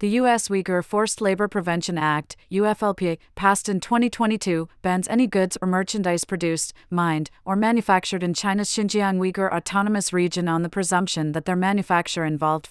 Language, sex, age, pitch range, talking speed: English, female, 40-59, 170-195 Hz, 155 wpm